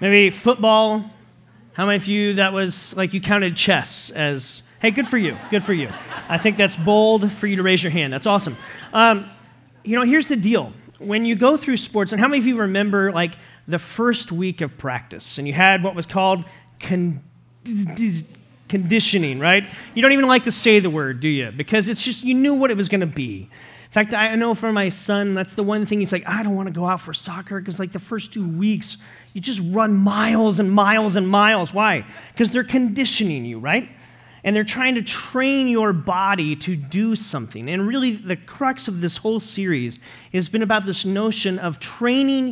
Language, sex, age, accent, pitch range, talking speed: English, male, 30-49, American, 175-220 Hz, 210 wpm